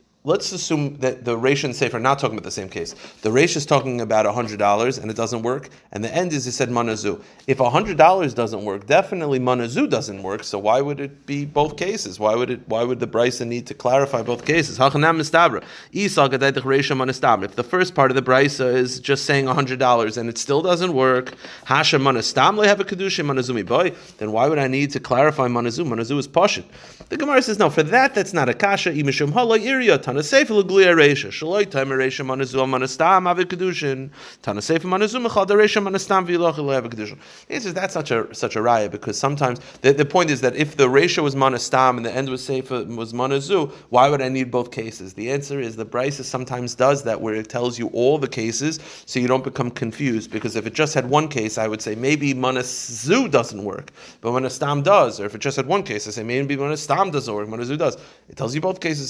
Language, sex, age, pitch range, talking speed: English, male, 30-49, 120-155 Hz, 190 wpm